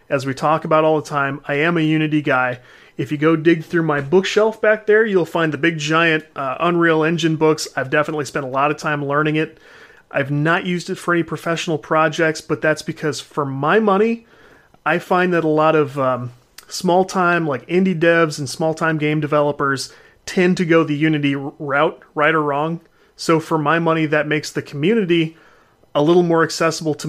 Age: 30-49